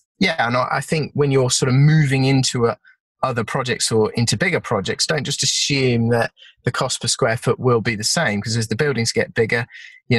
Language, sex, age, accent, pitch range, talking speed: English, male, 20-39, British, 110-135 Hz, 210 wpm